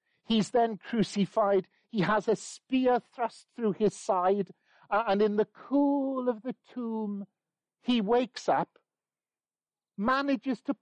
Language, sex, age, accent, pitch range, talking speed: English, male, 50-69, British, 170-230 Hz, 135 wpm